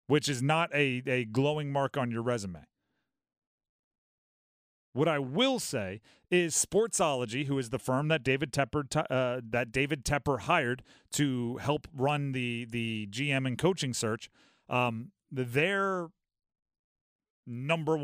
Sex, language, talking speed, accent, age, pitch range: male, English, 135 wpm, American, 30-49, 125-160 Hz